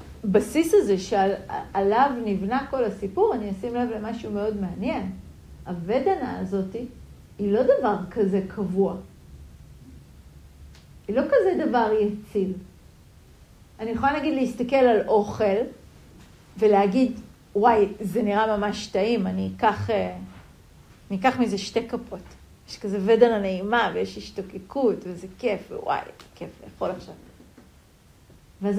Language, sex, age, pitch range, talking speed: Hebrew, female, 40-59, 190-230 Hz, 120 wpm